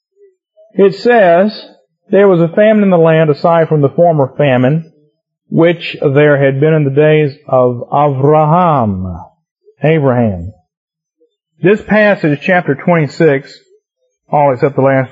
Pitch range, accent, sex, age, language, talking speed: 130-160 Hz, American, male, 40-59, English, 125 wpm